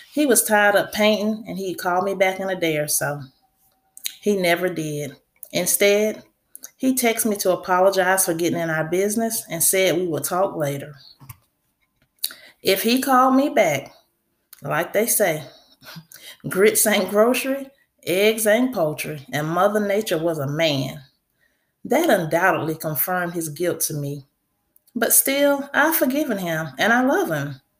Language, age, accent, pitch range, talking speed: English, 30-49, American, 165-225 Hz, 155 wpm